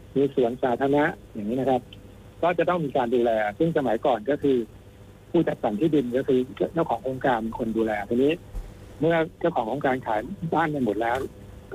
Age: 60-79